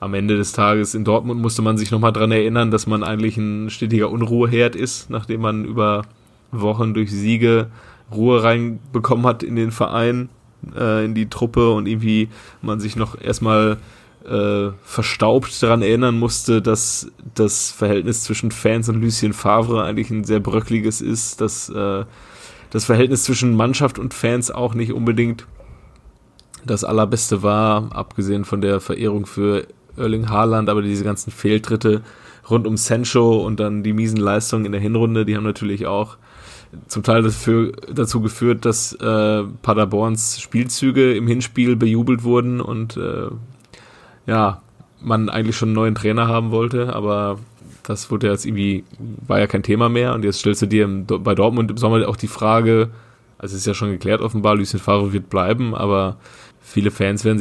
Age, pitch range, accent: 20-39, 105-115 Hz, German